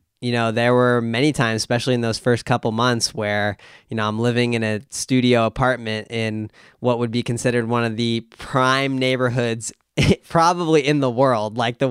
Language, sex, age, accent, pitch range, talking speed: English, male, 20-39, American, 105-125 Hz, 185 wpm